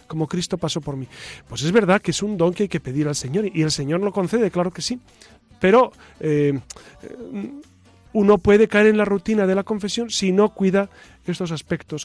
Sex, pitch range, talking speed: male, 150-205 Hz, 210 wpm